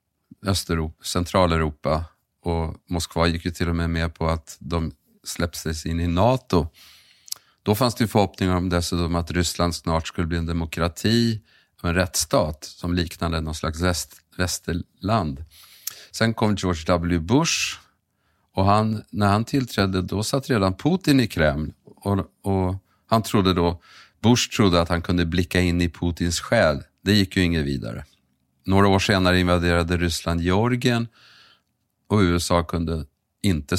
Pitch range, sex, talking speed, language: 85-100 Hz, male, 155 wpm, Swedish